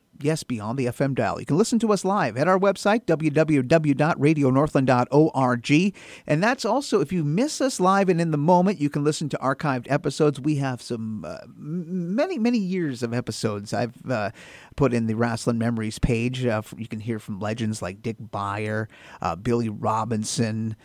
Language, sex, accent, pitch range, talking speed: English, male, American, 120-165 Hz, 175 wpm